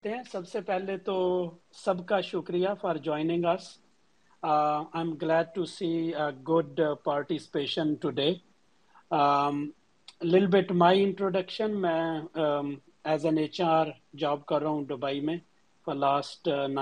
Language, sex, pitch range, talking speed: Urdu, male, 145-170 Hz, 45 wpm